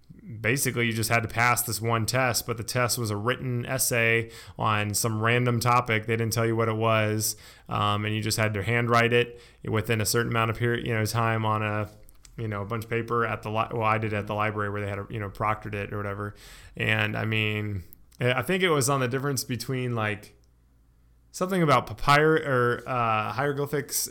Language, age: English, 20-39